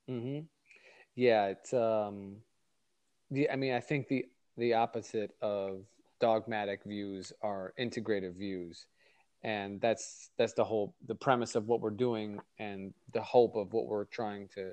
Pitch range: 105-125 Hz